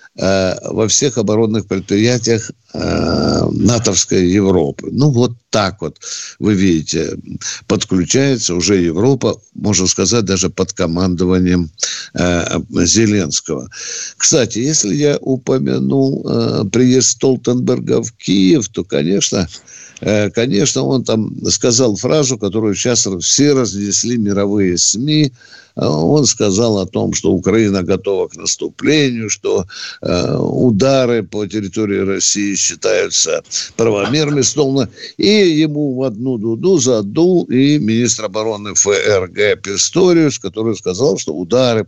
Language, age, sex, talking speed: Russian, 60-79, male, 105 wpm